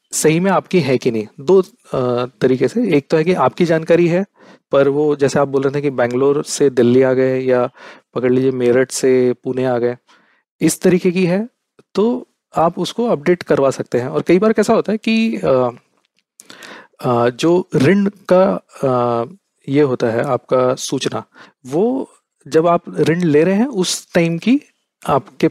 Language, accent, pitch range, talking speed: Hindi, native, 130-185 Hz, 175 wpm